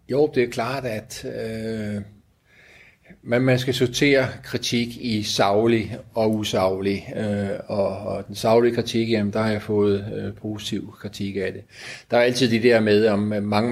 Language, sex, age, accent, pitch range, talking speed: Danish, male, 30-49, native, 105-120 Hz, 170 wpm